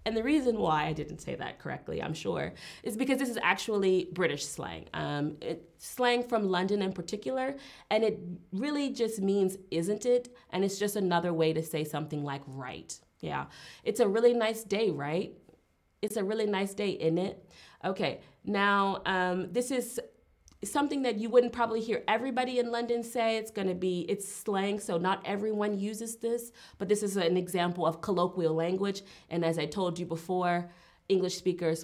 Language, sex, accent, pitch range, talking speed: English, female, American, 170-230 Hz, 185 wpm